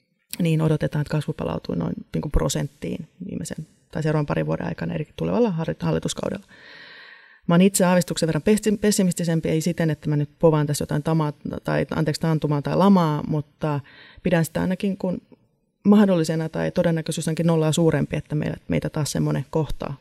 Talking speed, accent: 145 wpm, native